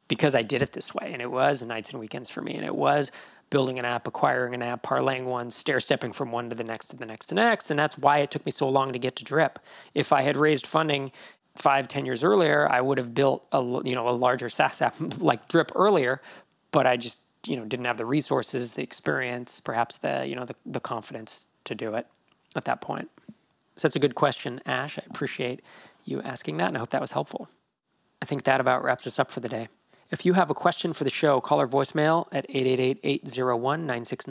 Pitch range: 125-150 Hz